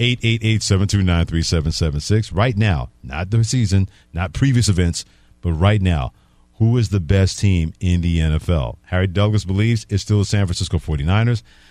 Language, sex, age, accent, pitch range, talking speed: English, male, 50-69, American, 90-110 Hz, 145 wpm